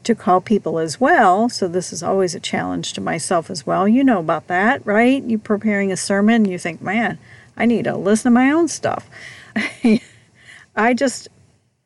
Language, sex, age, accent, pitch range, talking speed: English, female, 50-69, American, 150-220 Hz, 185 wpm